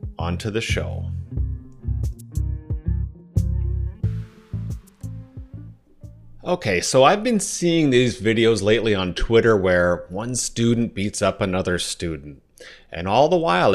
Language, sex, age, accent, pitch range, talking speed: English, male, 30-49, American, 95-135 Hz, 105 wpm